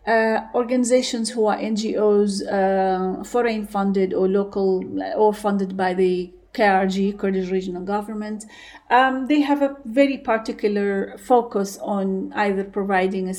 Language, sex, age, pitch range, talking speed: English, female, 40-59, 185-225 Hz, 125 wpm